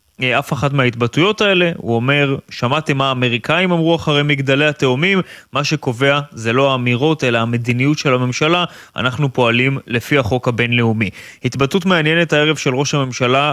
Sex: male